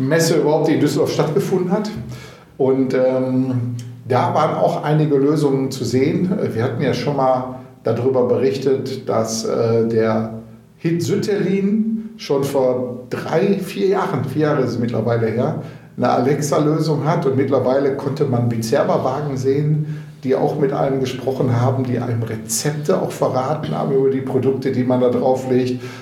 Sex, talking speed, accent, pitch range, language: male, 155 wpm, German, 125-150 Hz, German